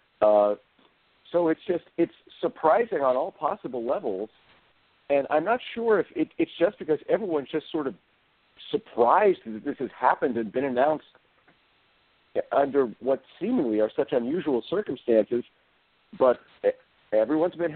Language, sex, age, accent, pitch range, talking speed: English, male, 50-69, American, 110-155 Hz, 140 wpm